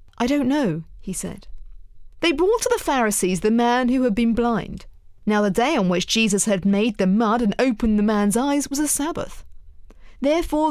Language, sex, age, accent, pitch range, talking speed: English, female, 40-59, British, 185-290 Hz, 195 wpm